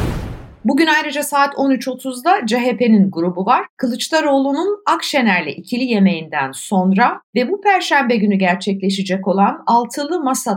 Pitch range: 195-275 Hz